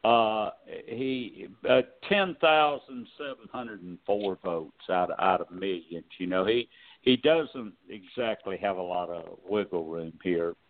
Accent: American